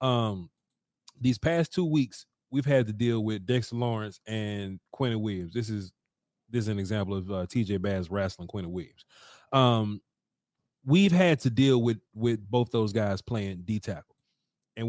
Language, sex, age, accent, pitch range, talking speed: English, male, 30-49, American, 110-155 Hz, 170 wpm